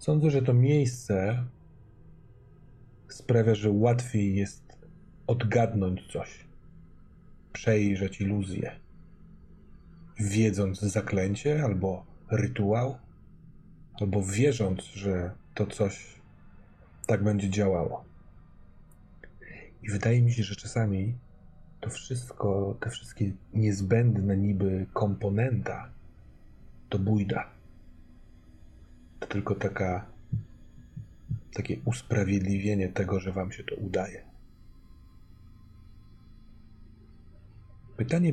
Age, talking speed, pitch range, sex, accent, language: 30-49, 80 wpm, 95-115 Hz, male, native, Polish